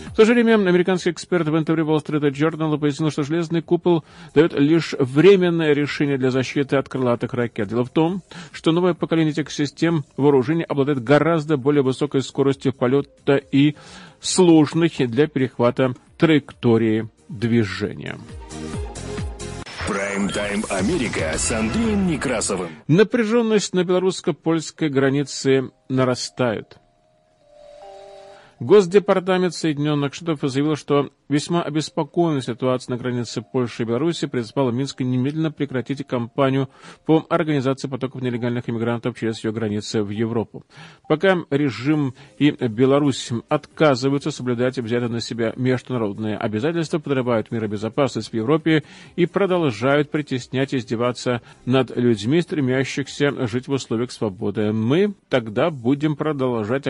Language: Russian